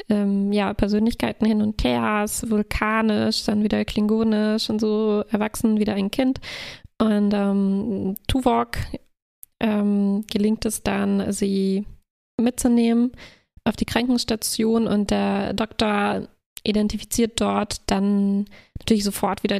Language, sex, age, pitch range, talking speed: German, female, 20-39, 205-225 Hz, 115 wpm